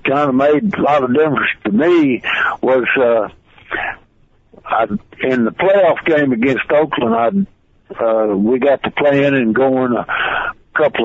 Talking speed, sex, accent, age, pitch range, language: 150 wpm, male, American, 60-79, 125-150 Hz, English